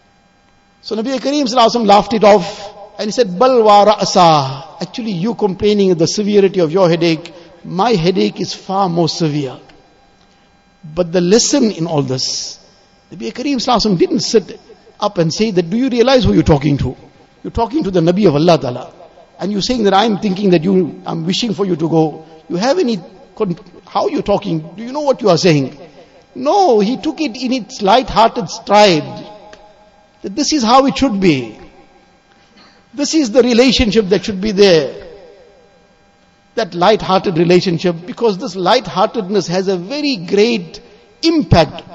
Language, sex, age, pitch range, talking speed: English, male, 60-79, 180-225 Hz, 170 wpm